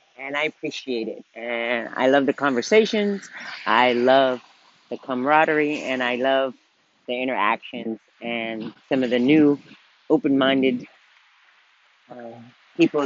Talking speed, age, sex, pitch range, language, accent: 115 wpm, 40-59, female, 130-160 Hz, English, American